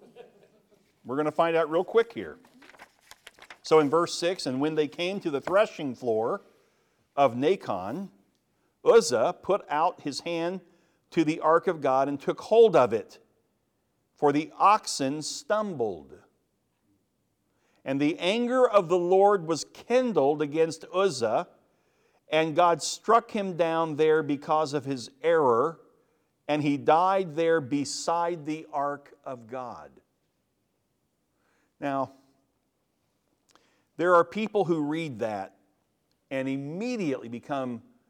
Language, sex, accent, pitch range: English, male, American, 135-180 Hz